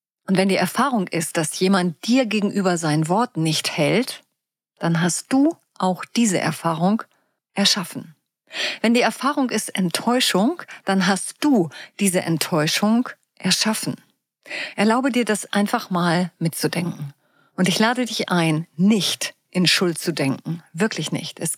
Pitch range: 175-235 Hz